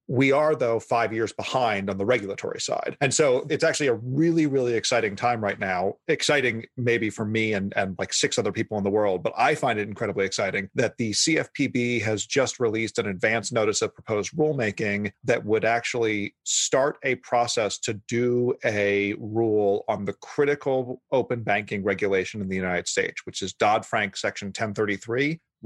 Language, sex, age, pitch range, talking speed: English, male, 40-59, 105-135 Hz, 180 wpm